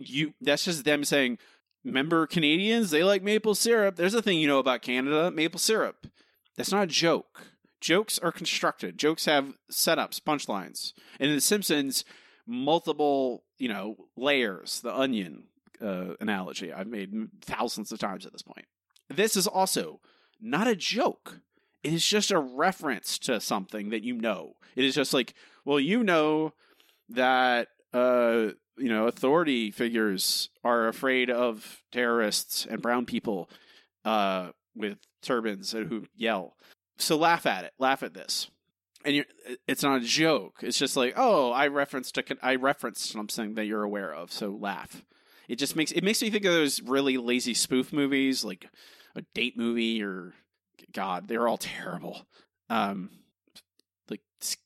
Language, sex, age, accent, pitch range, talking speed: English, male, 30-49, American, 120-160 Hz, 155 wpm